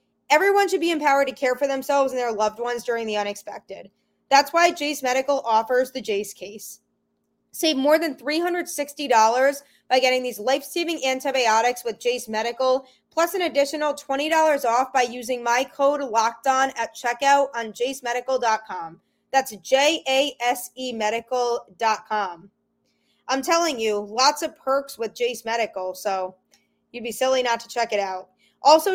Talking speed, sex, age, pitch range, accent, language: 155 wpm, female, 20-39, 225-270 Hz, American, English